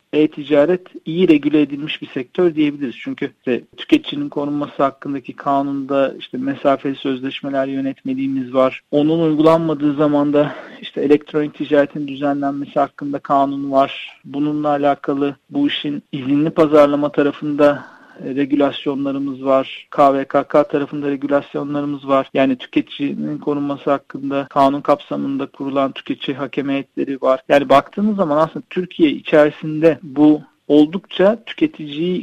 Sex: male